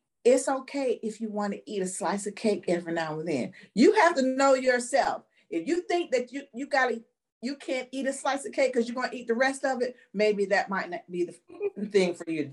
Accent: American